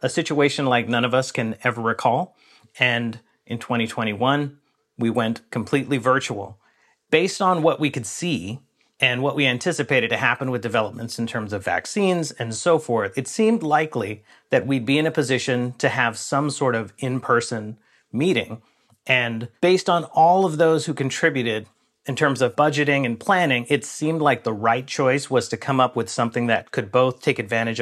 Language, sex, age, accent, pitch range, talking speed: English, male, 40-59, American, 115-145 Hz, 180 wpm